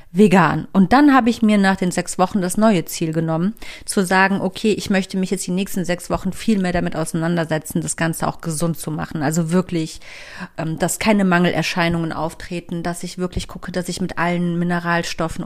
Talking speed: 195 wpm